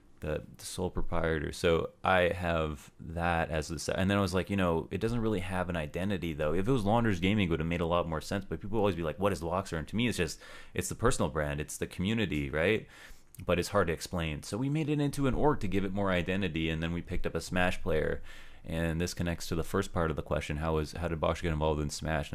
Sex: male